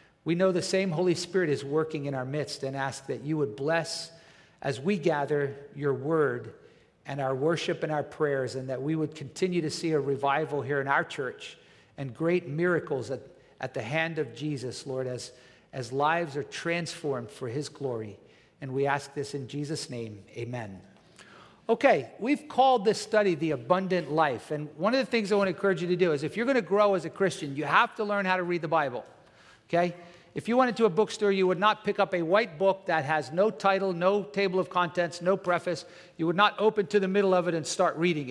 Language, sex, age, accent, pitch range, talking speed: English, male, 50-69, American, 150-195 Hz, 220 wpm